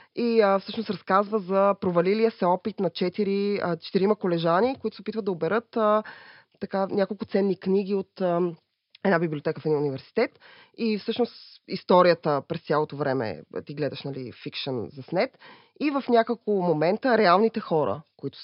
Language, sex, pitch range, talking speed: Bulgarian, female, 170-220 Hz, 160 wpm